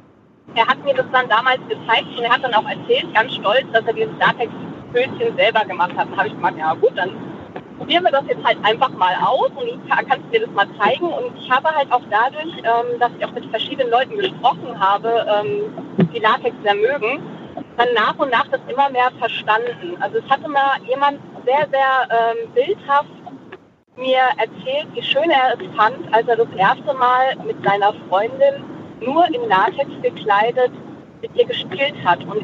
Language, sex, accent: German, female, German